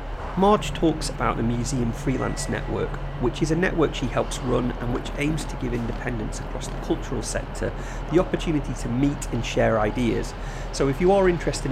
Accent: British